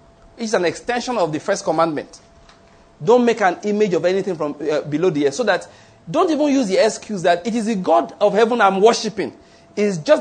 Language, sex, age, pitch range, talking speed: English, male, 40-59, 175-245 Hz, 210 wpm